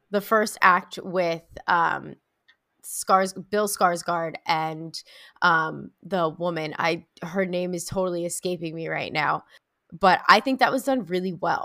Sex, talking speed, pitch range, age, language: female, 150 wpm, 175-215 Hz, 20-39, English